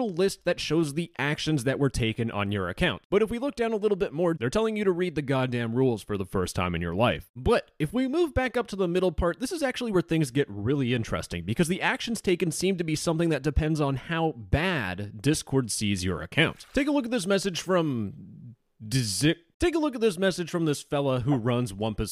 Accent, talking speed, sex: American, 245 wpm, male